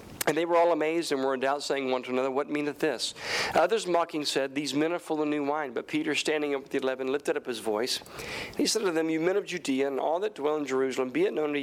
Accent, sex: American, male